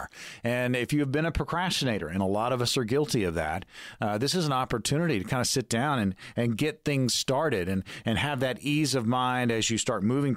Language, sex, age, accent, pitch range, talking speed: English, male, 40-59, American, 110-140 Hz, 235 wpm